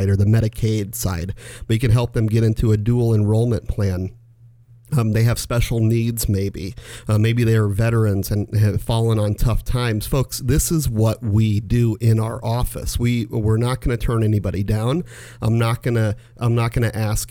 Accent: American